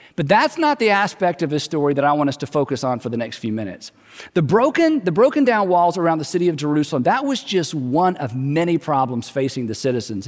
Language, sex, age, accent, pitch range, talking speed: English, male, 40-59, American, 140-200 Hz, 240 wpm